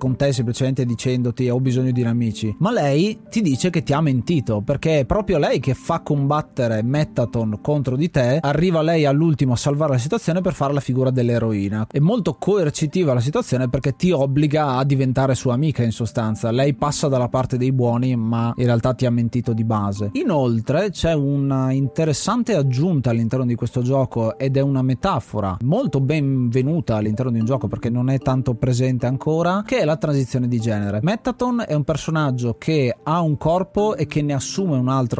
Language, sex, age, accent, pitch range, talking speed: Italian, male, 30-49, native, 125-155 Hz, 190 wpm